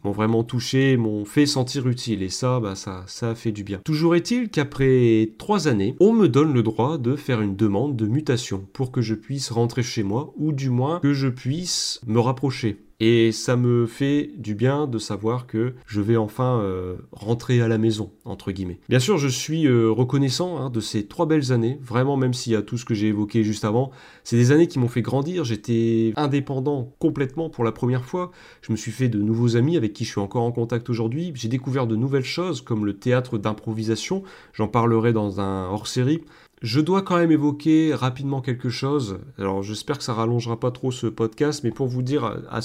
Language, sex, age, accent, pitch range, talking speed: French, male, 30-49, French, 110-135 Hz, 215 wpm